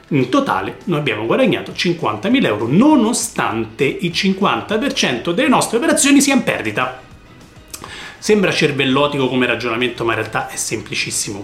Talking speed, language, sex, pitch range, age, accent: 130 wpm, Italian, male, 115-180 Hz, 30-49, native